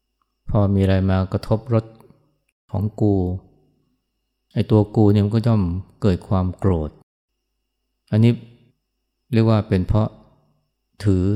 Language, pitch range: Thai, 95-110 Hz